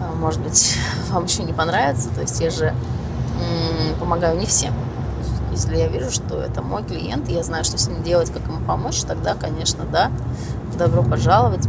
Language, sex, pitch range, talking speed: Russian, female, 115-125 Hz, 185 wpm